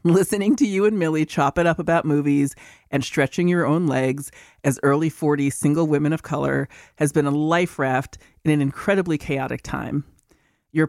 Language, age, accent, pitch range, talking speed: English, 30-49, American, 140-175 Hz, 180 wpm